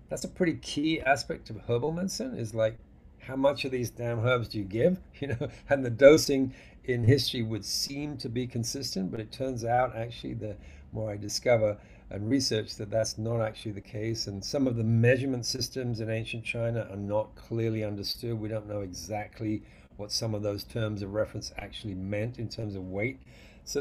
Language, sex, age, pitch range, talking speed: English, male, 50-69, 105-125 Hz, 200 wpm